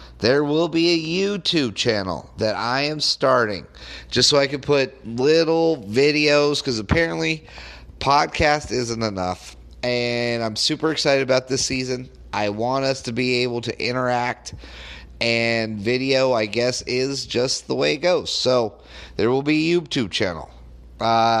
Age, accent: 30-49, American